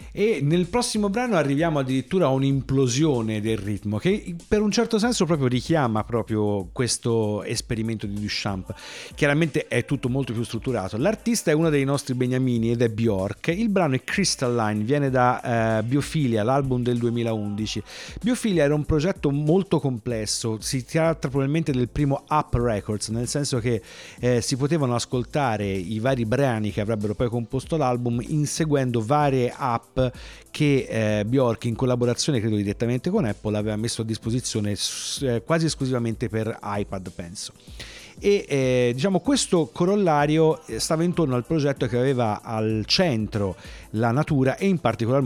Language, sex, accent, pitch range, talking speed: Italian, male, native, 110-145 Hz, 150 wpm